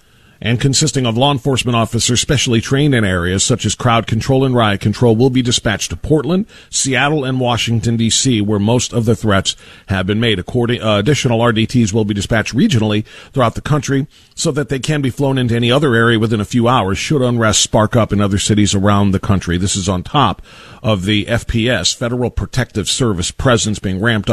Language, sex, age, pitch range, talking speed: English, male, 40-59, 110-155 Hz, 200 wpm